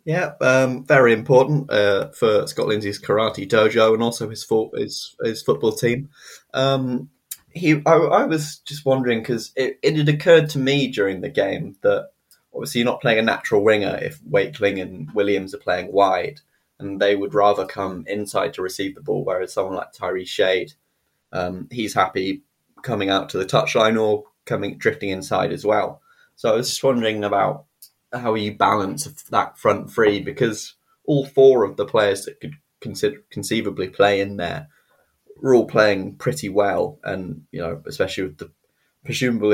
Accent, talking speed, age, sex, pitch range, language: British, 175 wpm, 20-39, male, 100-140 Hz, English